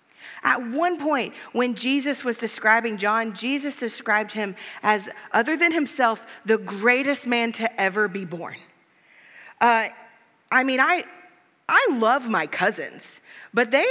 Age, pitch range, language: 30-49, 230-300 Hz, English